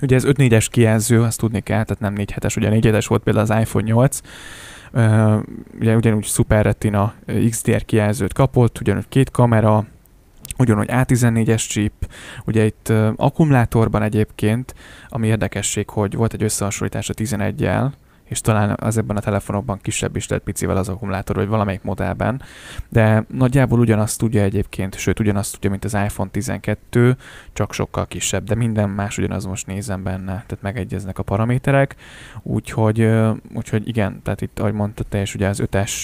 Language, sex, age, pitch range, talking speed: Hungarian, male, 10-29, 100-115 Hz, 160 wpm